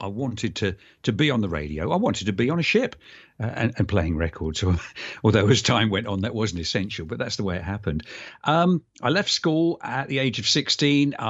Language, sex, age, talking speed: English, male, 50-69, 235 wpm